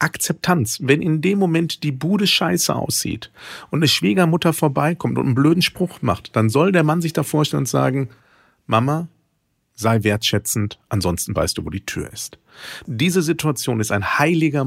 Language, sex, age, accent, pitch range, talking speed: German, male, 50-69, German, 115-170 Hz, 170 wpm